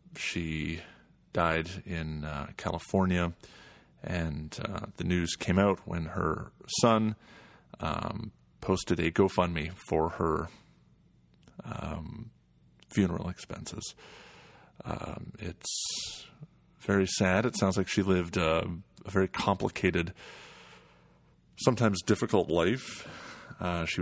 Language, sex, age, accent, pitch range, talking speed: English, male, 30-49, American, 80-95 Hz, 100 wpm